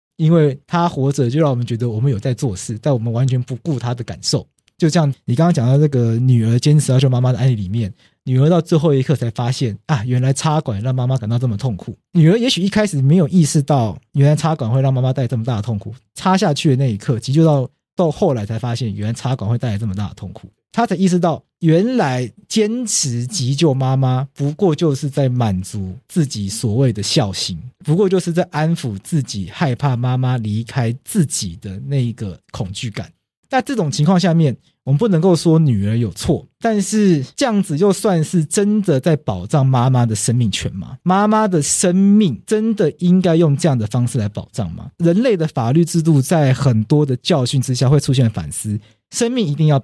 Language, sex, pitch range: Chinese, male, 120-165 Hz